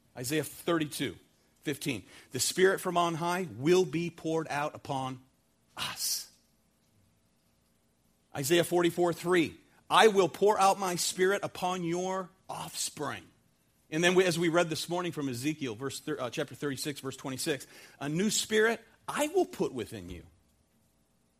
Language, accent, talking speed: English, American, 135 wpm